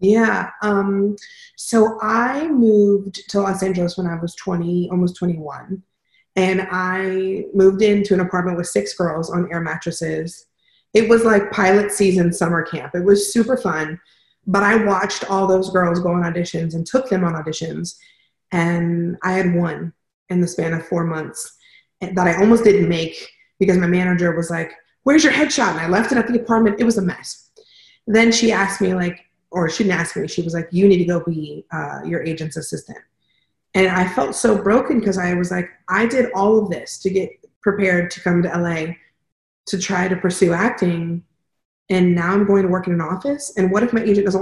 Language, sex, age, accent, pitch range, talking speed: English, female, 30-49, American, 175-205 Hz, 200 wpm